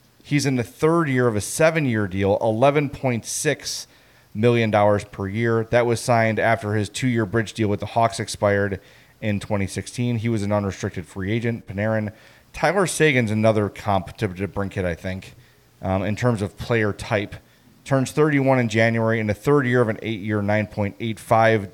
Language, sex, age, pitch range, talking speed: English, male, 30-49, 105-125 Hz, 170 wpm